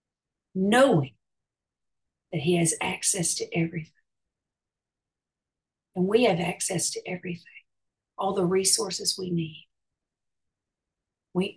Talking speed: 100 wpm